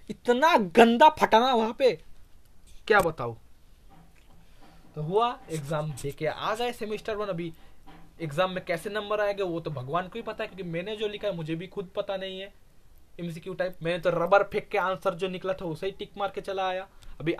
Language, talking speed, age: Hindi, 85 wpm, 20-39